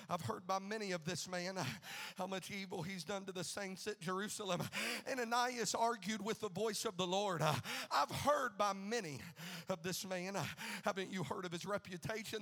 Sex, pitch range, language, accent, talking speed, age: male, 195-240 Hz, English, American, 205 wpm, 50-69